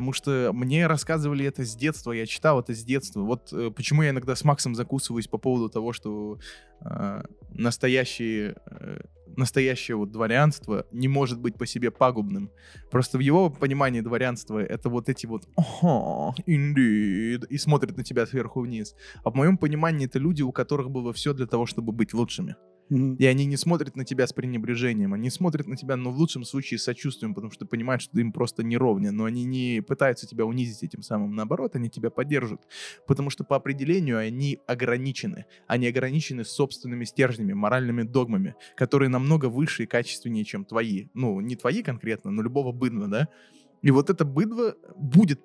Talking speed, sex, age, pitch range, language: 180 wpm, male, 20-39, 115-140 Hz, Russian